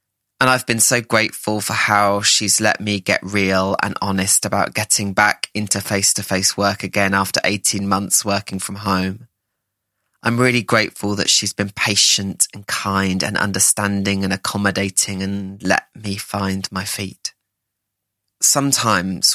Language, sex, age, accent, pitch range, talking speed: English, male, 20-39, British, 100-120 Hz, 145 wpm